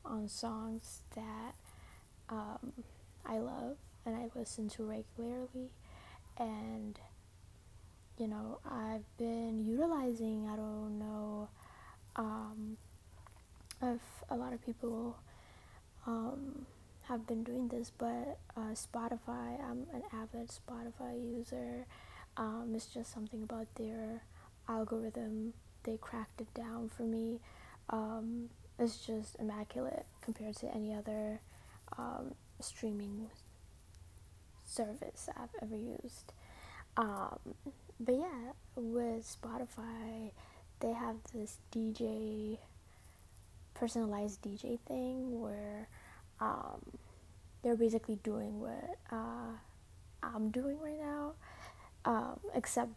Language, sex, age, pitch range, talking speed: English, female, 10-29, 210-235 Hz, 105 wpm